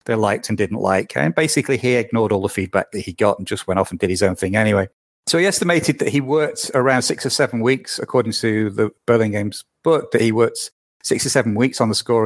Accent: British